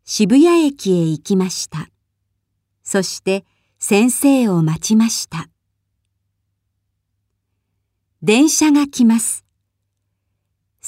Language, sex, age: Japanese, male, 40-59